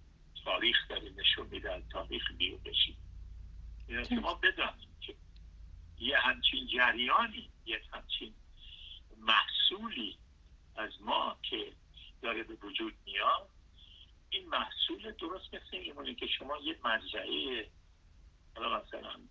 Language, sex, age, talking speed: Persian, male, 60-79, 95 wpm